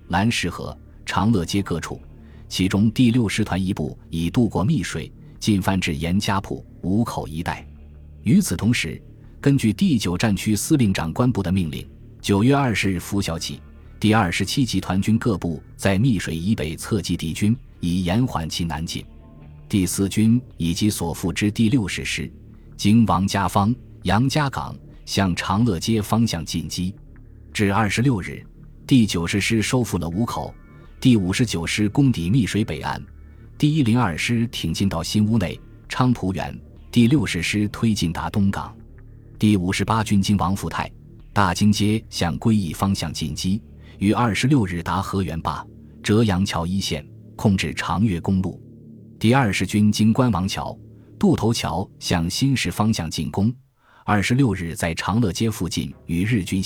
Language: Chinese